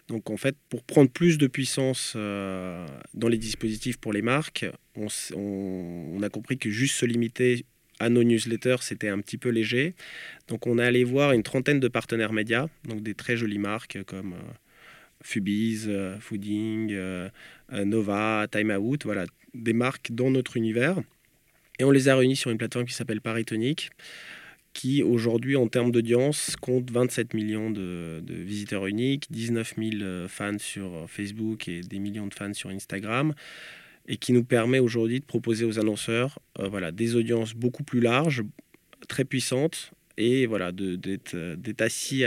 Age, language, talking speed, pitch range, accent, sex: 20-39, French, 170 wpm, 105-125 Hz, French, male